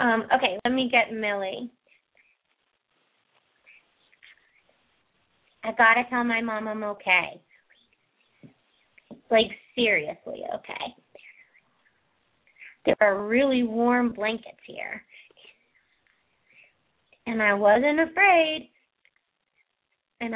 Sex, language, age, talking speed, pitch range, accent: female, English, 30-49, 85 wpm, 215-255 Hz, American